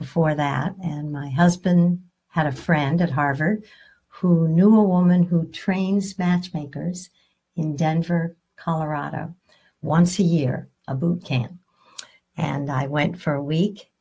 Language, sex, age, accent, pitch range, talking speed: English, female, 60-79, American, 155-190 Hz, 135 wpm